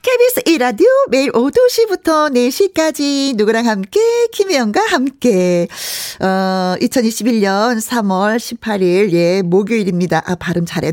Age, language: 40-59, Korean